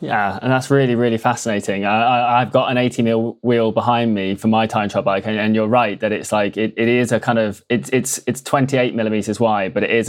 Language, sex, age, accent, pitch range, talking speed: English, male, 20-39, British, 105-120 Hz, 260 wpm